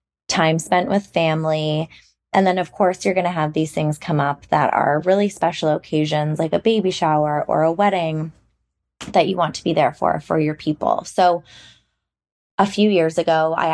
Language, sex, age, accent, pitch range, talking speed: English, female, 20-39, American, 155-175 Hz, 190 wpm